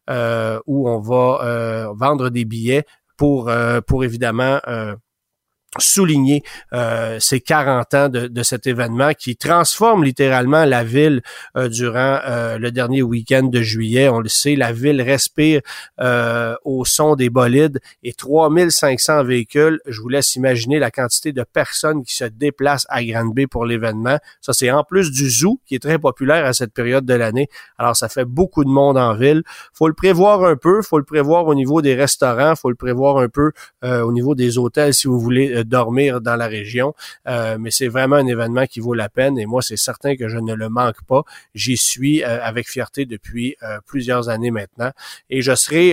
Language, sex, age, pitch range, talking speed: French, male, 40-59, 120-140 Hz, 195 wpm